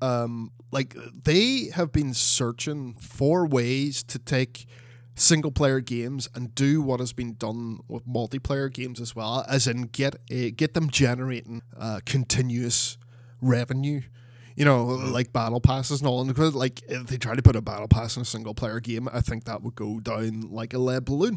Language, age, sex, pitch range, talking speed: English, 20-39, male, 120-145 Hz, 185 wpm